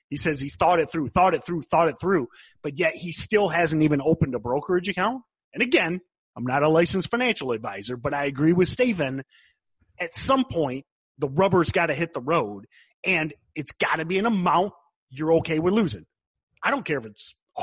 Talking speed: 210 wpm